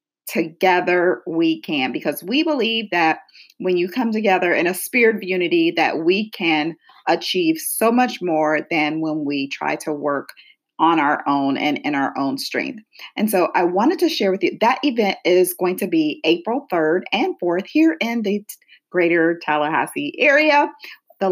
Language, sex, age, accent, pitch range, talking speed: English, female, 40-59, American, 180-280 Hz, 175 wpm